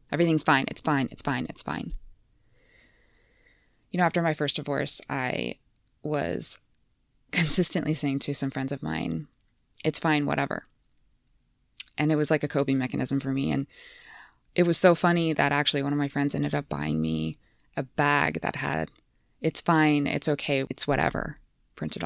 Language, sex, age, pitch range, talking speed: English, female, 20-39, 140-180 Hz, 165 wpm